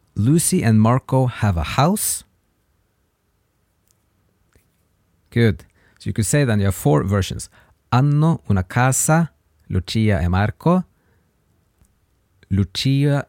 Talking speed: 105 wpm